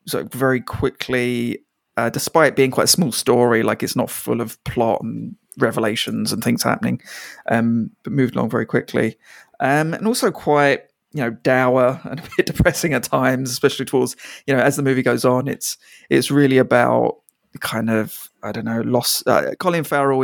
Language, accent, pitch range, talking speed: English, British, 120-145 Hz, 185 wpm